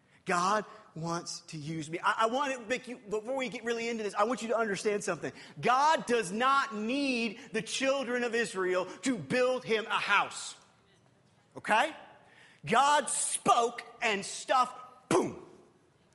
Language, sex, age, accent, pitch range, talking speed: English, male, 40-59, American, 200-265 Hz, 155 wpm